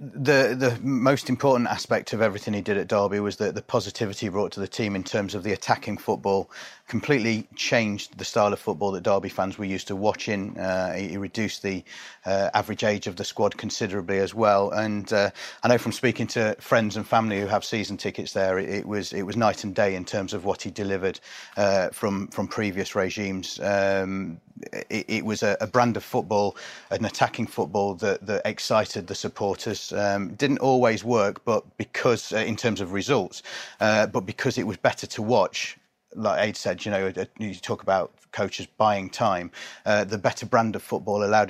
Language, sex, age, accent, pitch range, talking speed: English, male, 30-49, British, 100-110 Hz, 205 wpm